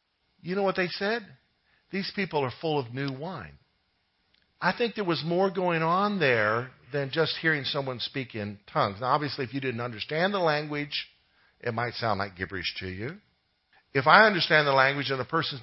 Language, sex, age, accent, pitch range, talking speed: English, male, 50-69, American, 135-190 Hz, 190 wpm